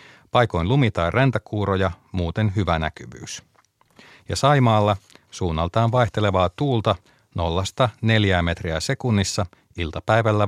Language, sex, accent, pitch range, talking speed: Finnish, male, native, 95-115 Hz, 90 wpm